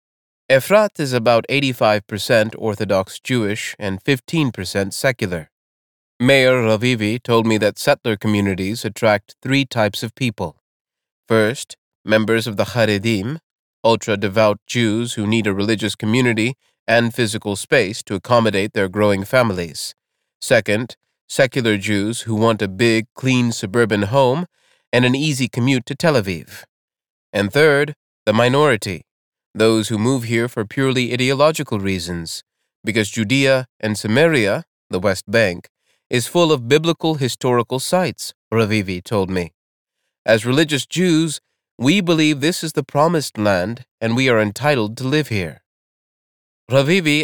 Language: English